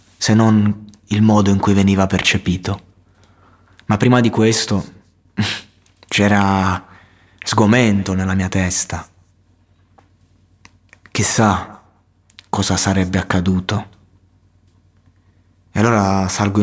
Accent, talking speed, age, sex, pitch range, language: native, 85 wpm, 20-39, male, 95-105 Hz, Italian